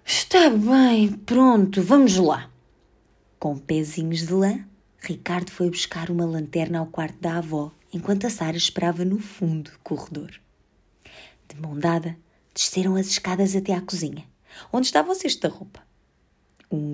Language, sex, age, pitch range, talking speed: Portuguese, female, 20-39, 155-210 Hz, 150 wpm